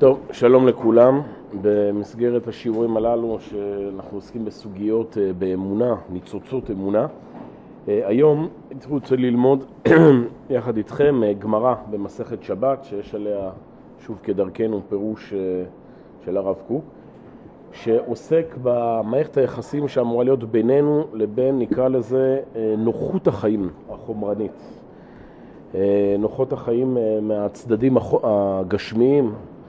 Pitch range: 110-155 Hz